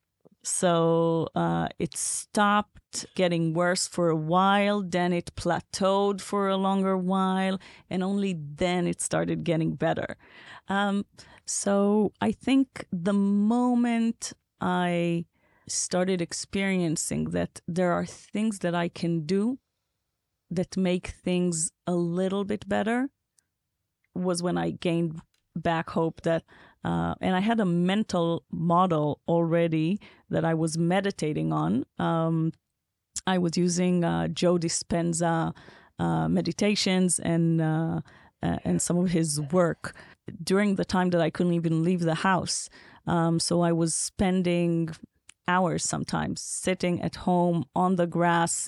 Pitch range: 165-190 Hz